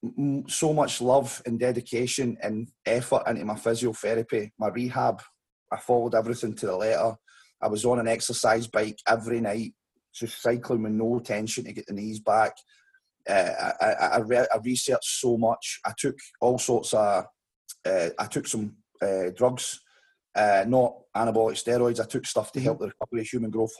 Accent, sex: British, male